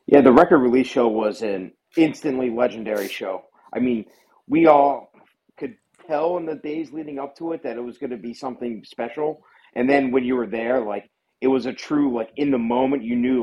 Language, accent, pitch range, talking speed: English, American, 115-140 Hz, 215 wpm